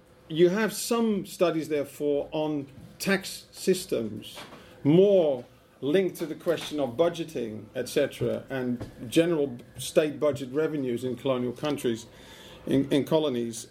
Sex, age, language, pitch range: male, 50-69, English, 130-170 Hz